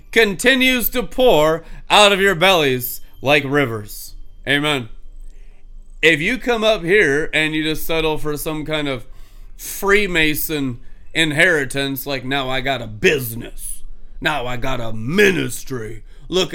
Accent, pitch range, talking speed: American, 130-165 Hz, 135 wpm